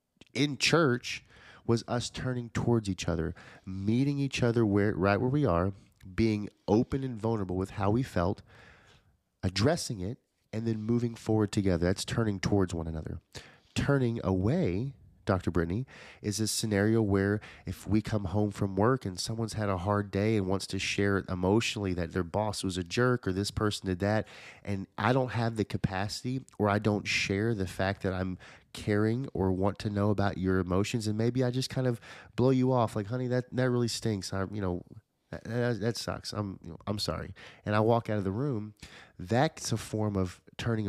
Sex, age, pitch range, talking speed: male, 30-49, 95-115 Hz, 200 wpm